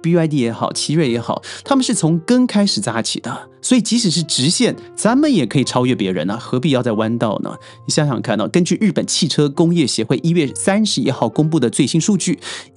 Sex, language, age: male, Chinese, 30-49